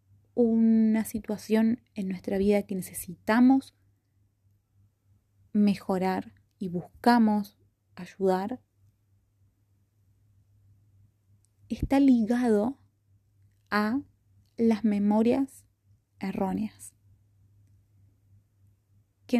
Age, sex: 20-39, female